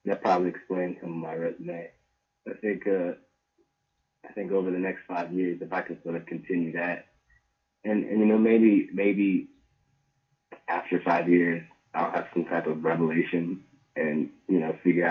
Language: English